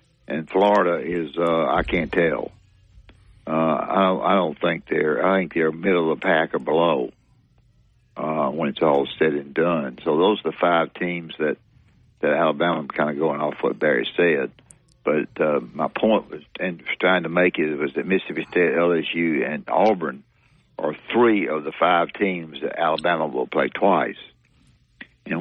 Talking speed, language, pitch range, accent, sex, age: 175 wpm, English, 80-100 Hz, American, male, 60-79